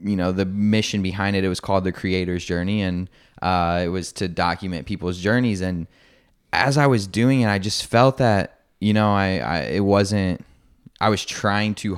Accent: American